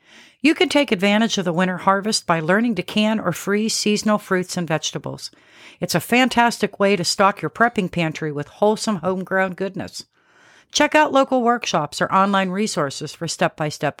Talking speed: 170 wpm